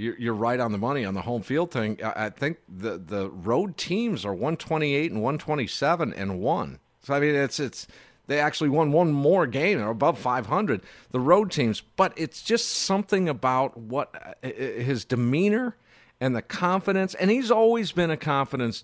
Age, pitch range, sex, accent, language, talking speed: 50-69, 115-160 Hz, male, American, English, 180 wpm